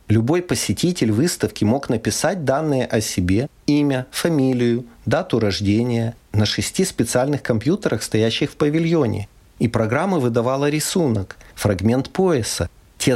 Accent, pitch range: native, 105-140 Hz